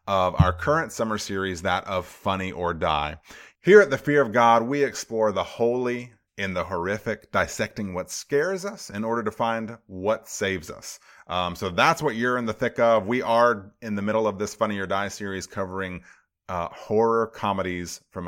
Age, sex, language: 30-49, male, English